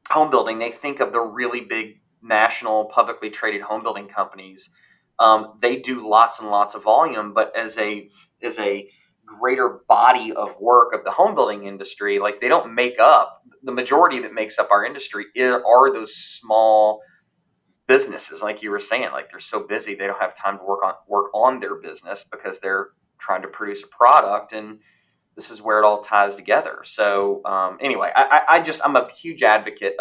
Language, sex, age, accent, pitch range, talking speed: English, male, 30-49, American, 100-115 Hz, 190 wpm